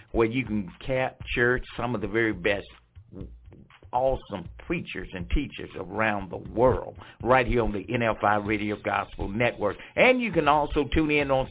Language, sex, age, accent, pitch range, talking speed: English, male, 60-79, American, 120-150 Hz, 160 wpm